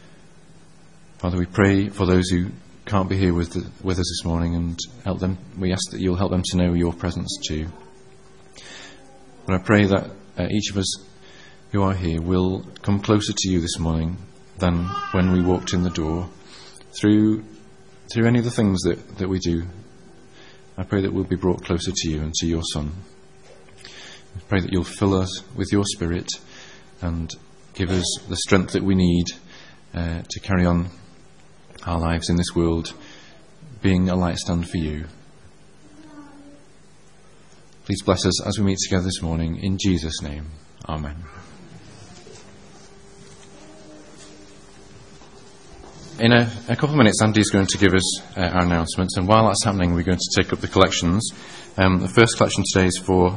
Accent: British